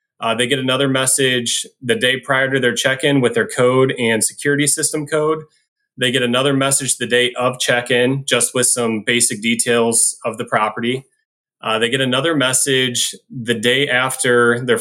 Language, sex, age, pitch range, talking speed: English, male, 20-39, 115-135 Hz, 180 wpm